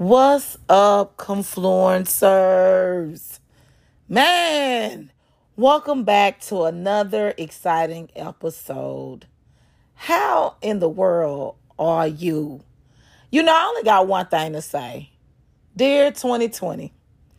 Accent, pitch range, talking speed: American, 180-245 Hz, 95 wpm